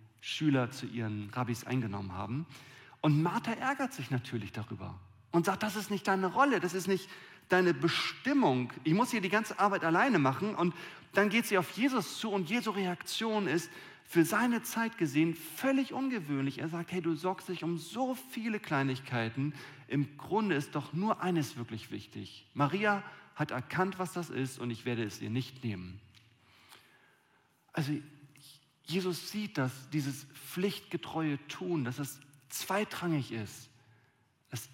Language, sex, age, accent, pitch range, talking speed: German, male, 40-59, German, 125-175 Hz, 160 wpm